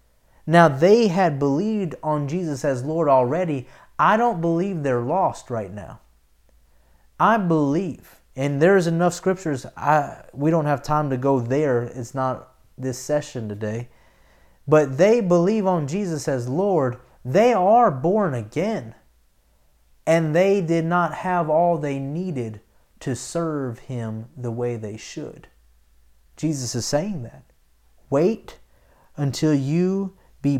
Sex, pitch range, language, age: male, 105-155 Hz, English, 30-49